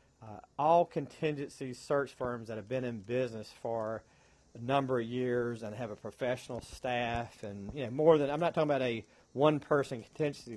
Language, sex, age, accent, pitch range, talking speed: English, male, 40-59, American, 115-140 Hz, 185 wpm